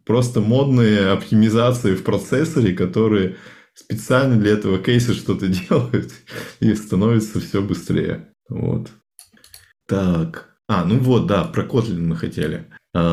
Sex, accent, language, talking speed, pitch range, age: male, native, Russian, 120 wpm, 90-115 Hz, 20-39